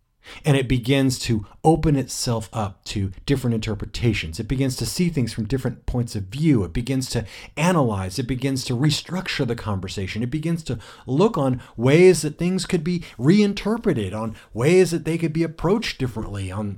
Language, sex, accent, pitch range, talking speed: English, male, American, 110-165 Hz, 180 wpm